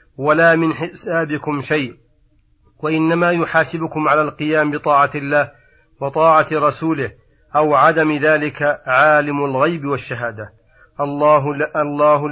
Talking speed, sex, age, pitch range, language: 95 wpm, male, 40-59, 140-160 Hz, Arabic